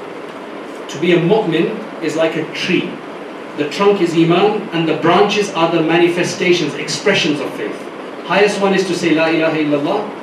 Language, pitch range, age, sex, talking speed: English, 155-200 Hz, 40-59, male, 170 wpm